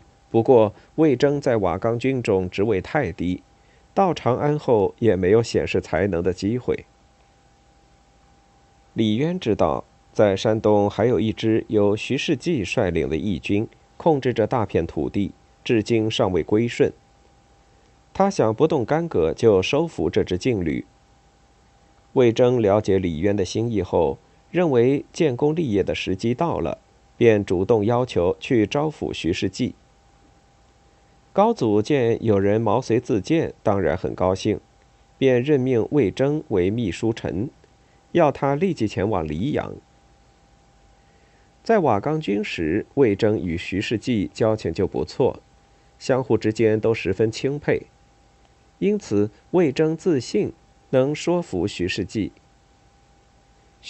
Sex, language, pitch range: male, Chinese, 105-145 Hz